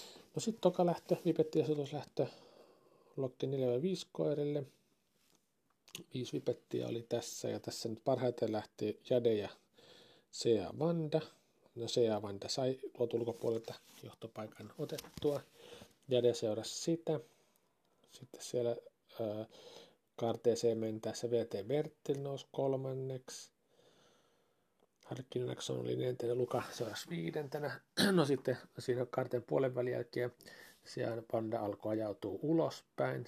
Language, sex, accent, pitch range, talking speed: Finnish, male, native, 115-150 Hz, 105 wpm